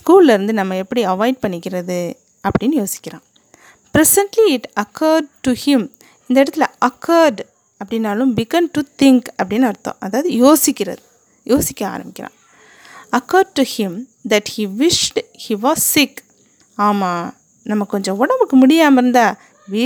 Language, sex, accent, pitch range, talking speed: English, female, Indian, 225-310 Hz, 85 wpm